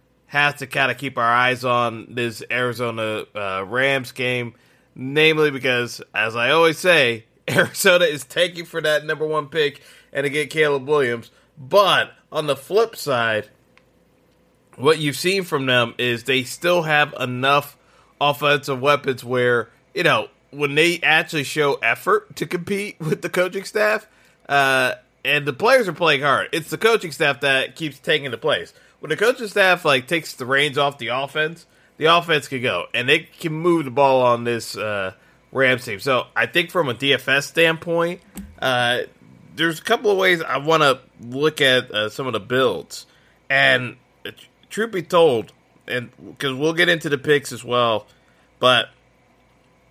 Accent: American